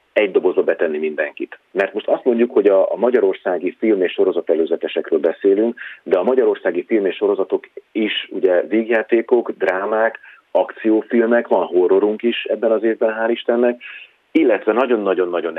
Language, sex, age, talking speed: Hungarian, male, 40-59, 140 wpm